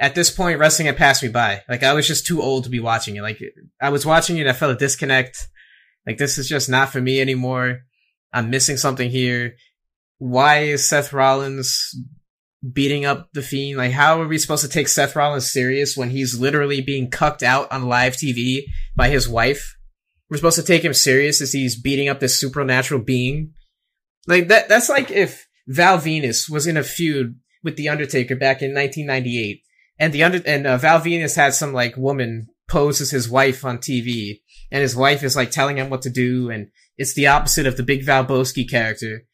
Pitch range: 130-150 Hz